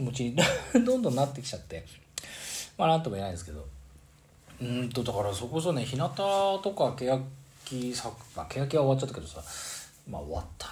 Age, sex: 40-59, male